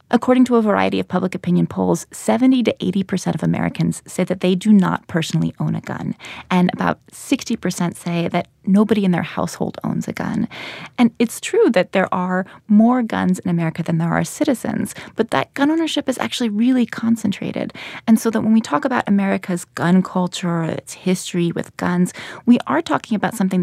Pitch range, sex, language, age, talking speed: 180-240 Hz, female, English, 20-39, 195 wpm